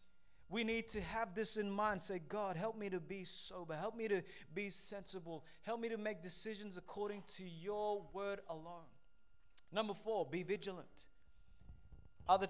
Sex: male